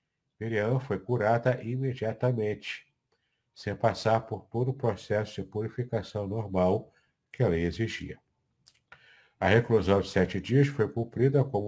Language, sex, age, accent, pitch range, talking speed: Portuguese, male, 60-79, Brazilian, 95-115 Hz, 130 wpm